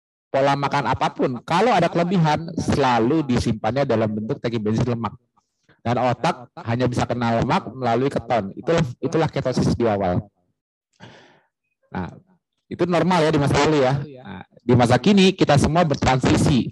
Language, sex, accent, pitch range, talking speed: Indonesian, male, native, 120-150 Hz, 145 wpm